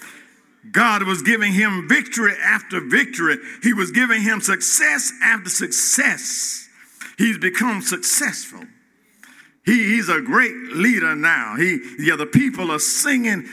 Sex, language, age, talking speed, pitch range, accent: male, English, 50-69, 135 wpm, 205-260 Hz, American